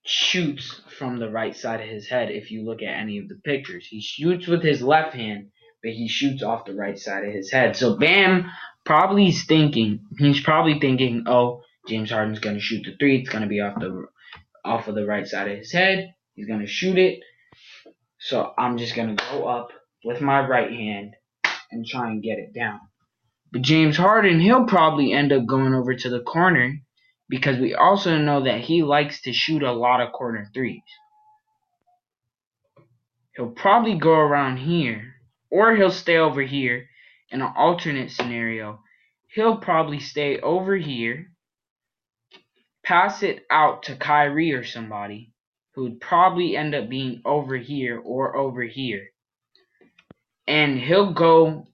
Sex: male